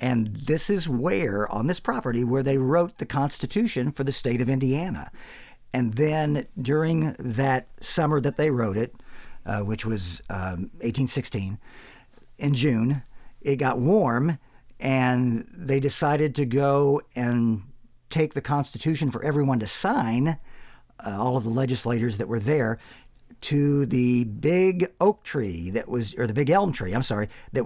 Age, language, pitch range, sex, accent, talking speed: 50-69, English, 115-140 Hz, male, American, 155 wpm